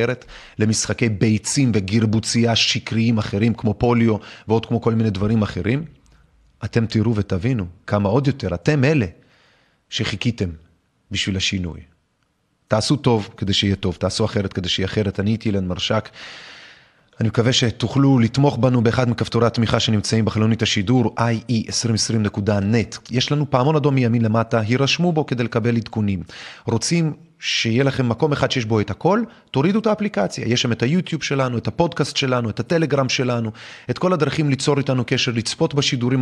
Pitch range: 110-135 Hz